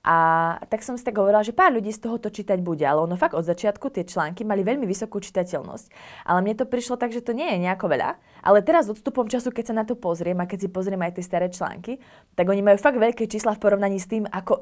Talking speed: 265 wpm